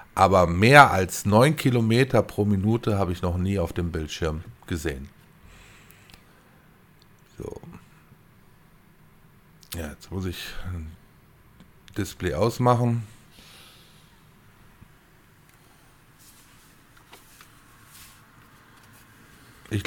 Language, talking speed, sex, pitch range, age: German, 70 wpm, male, 95-130 Hz, 50-69